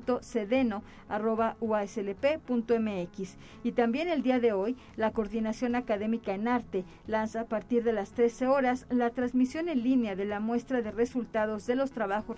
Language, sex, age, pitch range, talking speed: Spanish, female, 40-59, 220-255 Hz, 150 wpm